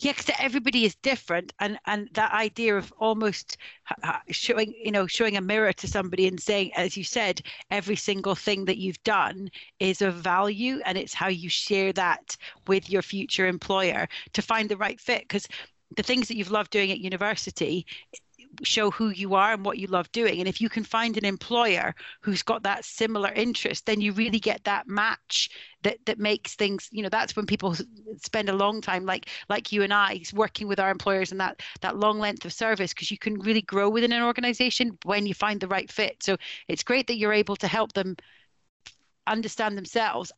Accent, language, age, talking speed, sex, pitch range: British, English, 40-59, 205 wpm, female, 195-220 Hz